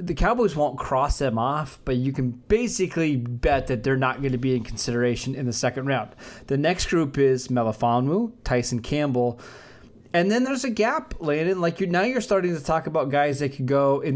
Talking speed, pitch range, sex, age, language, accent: 210 wpm, 125-155 Hz, male, 20-39, English, American